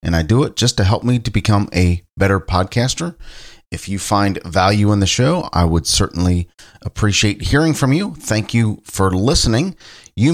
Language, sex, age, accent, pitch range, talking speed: English, male, 40-59, American, 90-125 Hz, 185 wpm